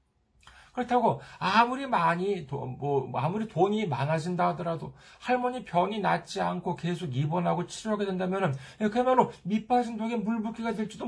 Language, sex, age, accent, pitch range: Korean, male, 40-59, native, 130-225 Hz